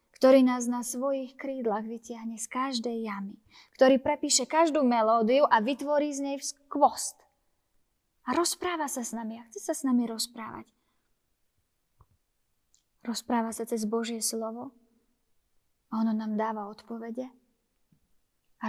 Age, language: 20-39, Slovak